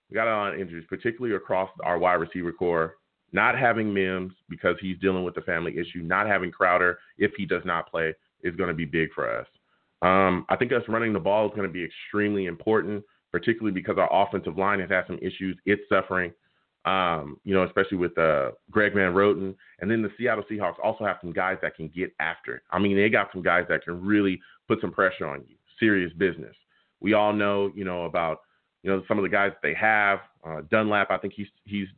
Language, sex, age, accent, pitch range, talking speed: English, male, 30-49, American, 90-105 Hz, 225 wpm